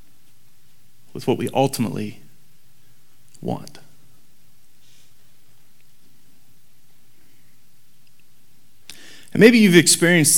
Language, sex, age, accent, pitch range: English, male, 30-49, American, 120-140 Hz